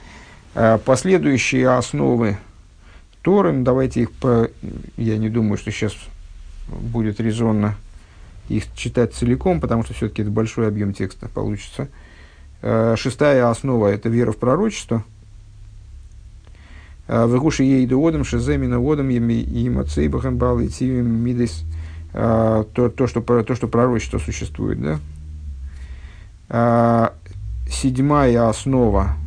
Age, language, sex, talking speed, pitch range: 50-69, Russian, male, 95 wpm, 90-115 Hz